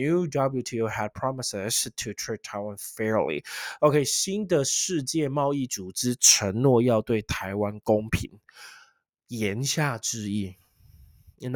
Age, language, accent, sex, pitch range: 20-39, Chinese, native, male, 105-140 Hz